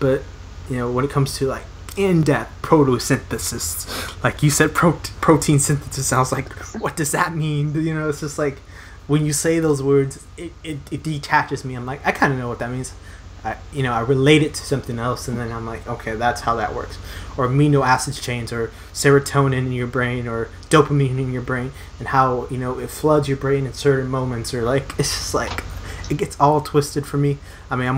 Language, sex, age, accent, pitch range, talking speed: English, male, 20-39, American, 115-145 Hz, 220 wpm